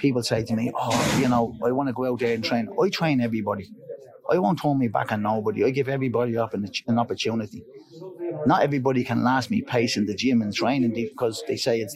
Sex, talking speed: male, 235 wpm